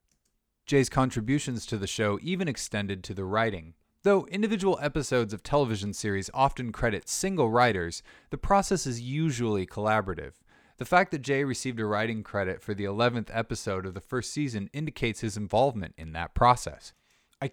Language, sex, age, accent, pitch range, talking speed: English, male, 20-39, American, 100-130 Hz, 165 wpm